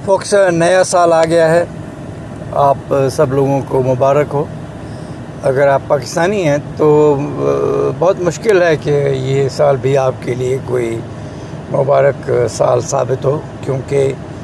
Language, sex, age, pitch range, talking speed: English, male, 60-79, 135-160 Hz, 135 wpm